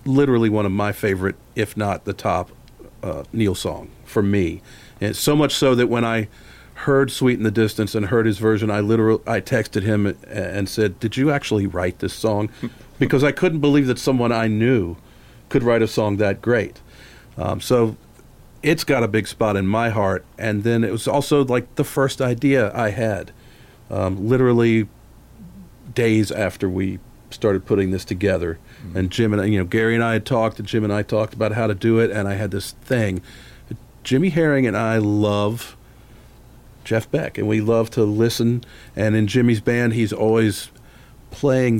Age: 40-59